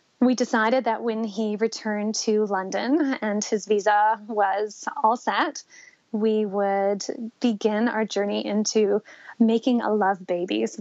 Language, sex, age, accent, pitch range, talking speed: English, female, 20-39, American, 210-245 Hz, 140 wpm